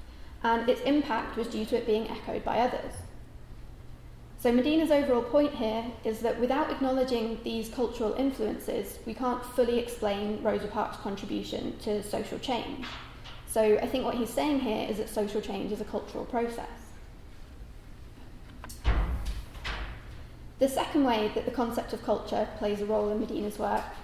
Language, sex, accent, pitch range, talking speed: German, female, British, 220-255 Hz, 155 wpm